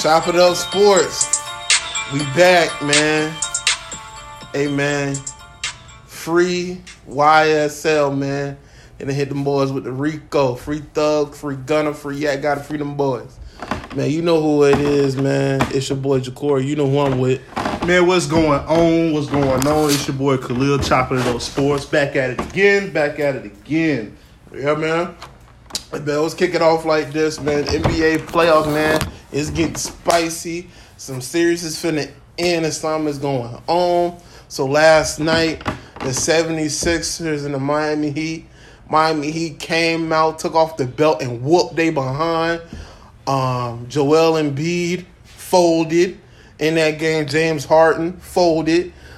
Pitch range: 140-160 Hz